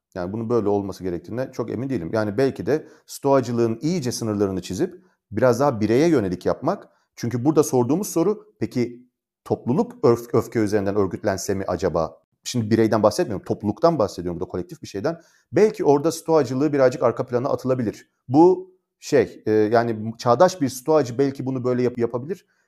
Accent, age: native, 40-59